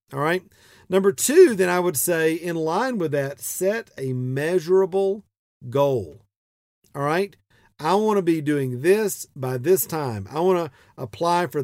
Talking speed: 165 wpm